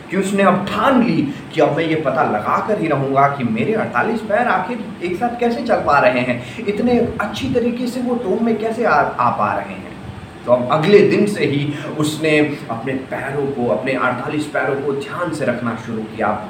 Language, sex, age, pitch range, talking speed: Hindi, male, 30-49, 130-215 Hz, 210 wpm